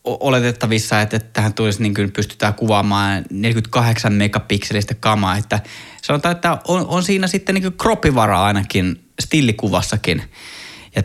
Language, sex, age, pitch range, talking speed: Finnish, male, 20-39, 105-150 Hz, 125 wpm